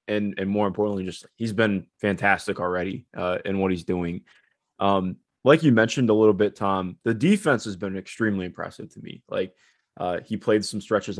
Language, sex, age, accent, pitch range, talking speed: English, male, 20-39, American, 95-110 Hz, 195 wpm